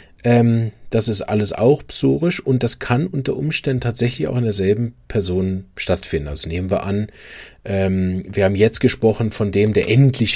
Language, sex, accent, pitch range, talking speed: German, male, German, 100-120 Hz, 175 wpm